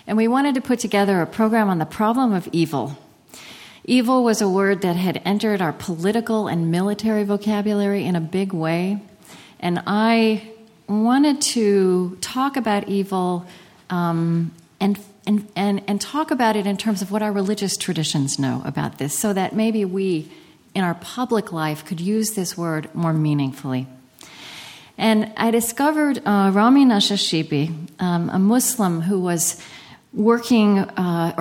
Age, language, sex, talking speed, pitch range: 40-59, English, female, 155 wpm, 165-210 Hz